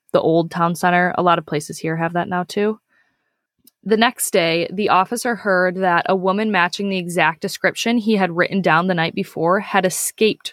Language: English